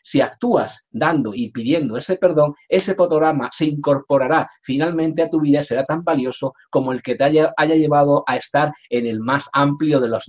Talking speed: 200 wpm